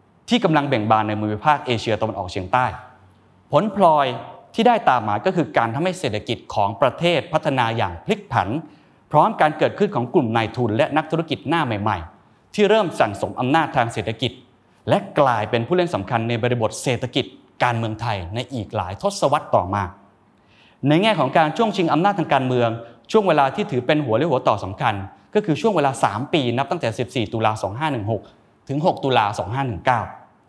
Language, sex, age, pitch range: Thai, male, 20-39, 110-160 Hz